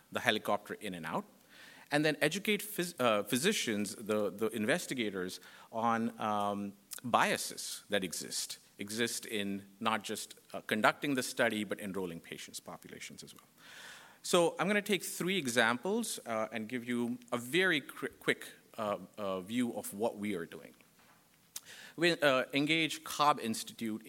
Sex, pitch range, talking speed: male, 105-150 Hz, 145 wpm